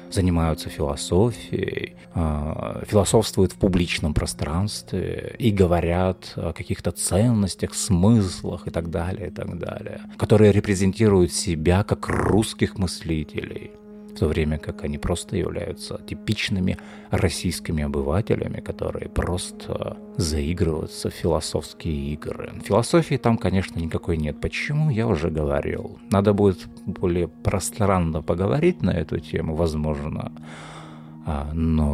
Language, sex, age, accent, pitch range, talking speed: Russian, male, 30-49, native, 80-105 Hz, 105 wpm